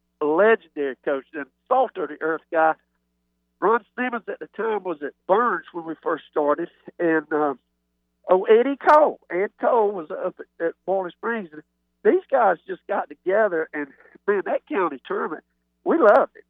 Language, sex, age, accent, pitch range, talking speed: English, male, 60-79, American, 150-240 Hz, 170 wpm